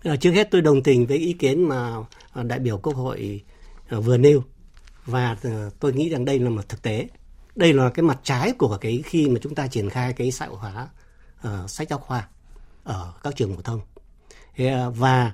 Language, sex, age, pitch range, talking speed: Vietnamese, male, 60-79, 110-150 Hz, 205 wpm